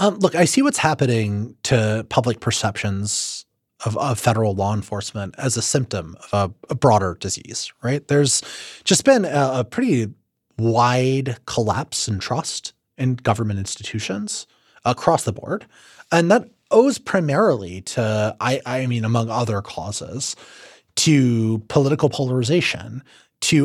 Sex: male